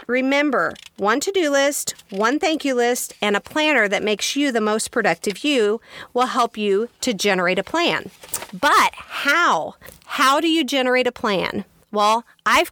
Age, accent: 40-59, American